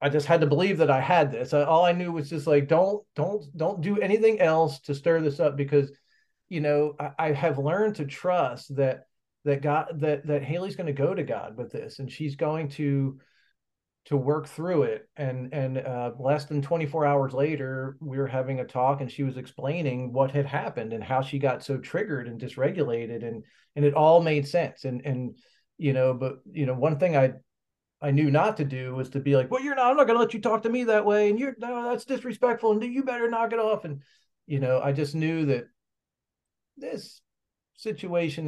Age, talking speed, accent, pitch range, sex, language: 40-59, 220 wpm, American, 135-165 Hz, male, English